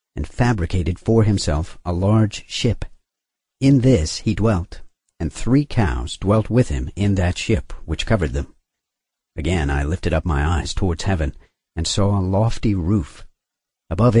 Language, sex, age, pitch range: English, male, 50-69, 80-110 Hz